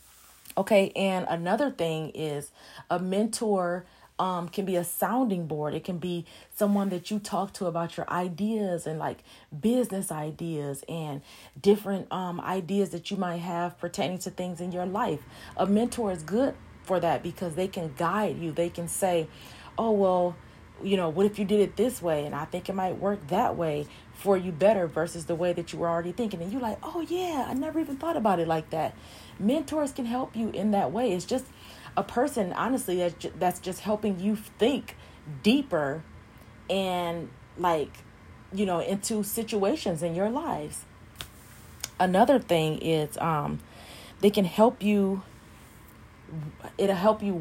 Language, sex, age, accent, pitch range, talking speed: English, female, 30-49, American, 170-205 Hz, 175 wpm